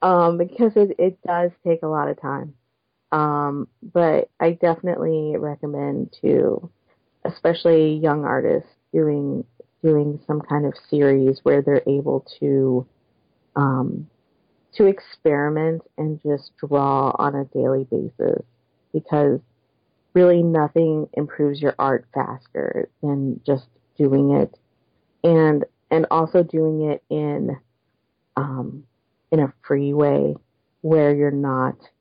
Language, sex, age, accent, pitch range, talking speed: English, female, 30-49, American, 135-155 Hz, 120 wpm